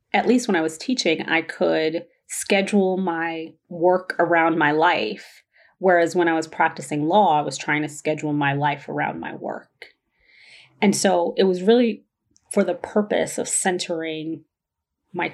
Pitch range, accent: 160-205 Hz, American